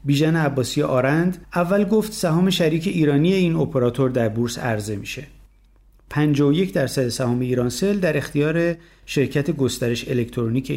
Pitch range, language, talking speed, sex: 125-160 Hz, Persian, 130 wpm, male